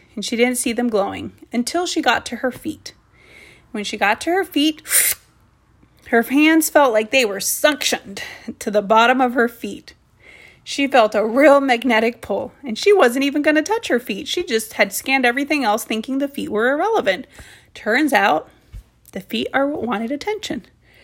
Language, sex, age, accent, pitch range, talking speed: English, female, 30-49, American, 215-280 Hz, 185 wpm